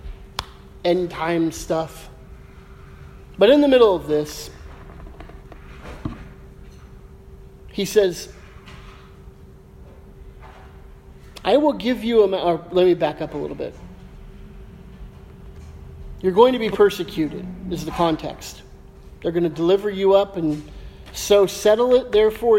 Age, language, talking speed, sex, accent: 40-59, English, 110 wpm, male, American